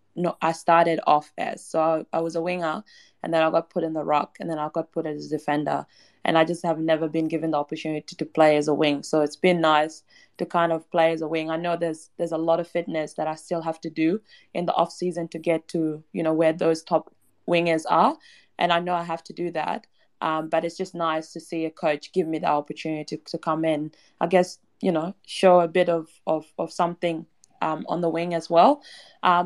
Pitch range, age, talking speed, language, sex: 155-175 Hz, 20-39, 250 wpm, English, female